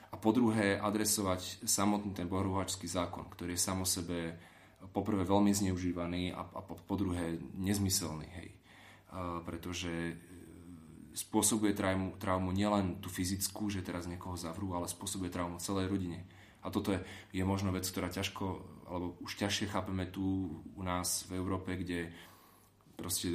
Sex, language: male, Slovak